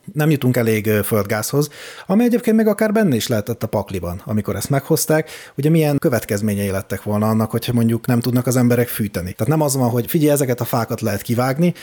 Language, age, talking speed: Hungarian, 30-49, 205 wpm